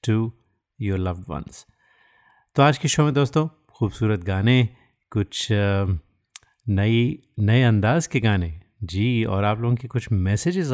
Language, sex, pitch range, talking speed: Hindi, male, 100-120 Hz, 145 wpm